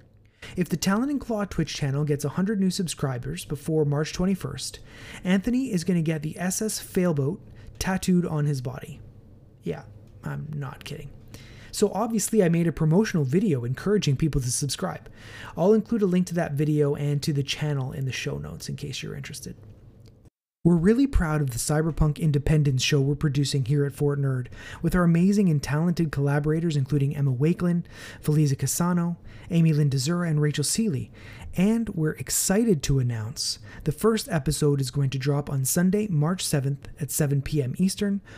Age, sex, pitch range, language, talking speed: 30-49, male, 130-175 Hz, English, 170 wpm